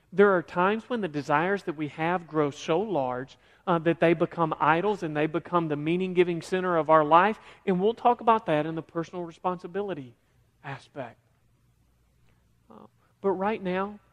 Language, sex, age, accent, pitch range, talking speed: English, male, 40-59, American, 130-185 Hz, 170 wpm